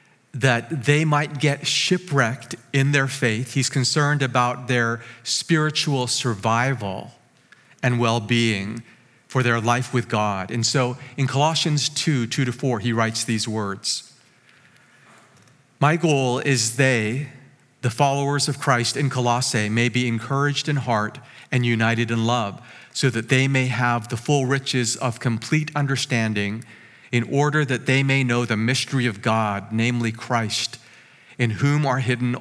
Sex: male